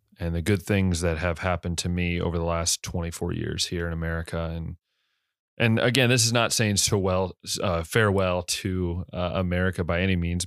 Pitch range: 85-100 Hz